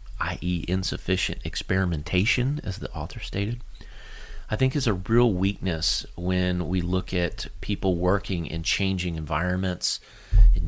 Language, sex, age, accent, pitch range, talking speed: English, male, 30-49, American, 85-100 Hz, 130 wpm